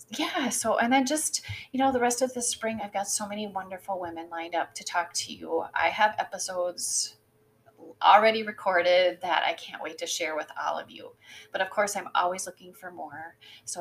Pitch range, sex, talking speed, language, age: 175-225 Hz, female, 210 wpm, English, 30-49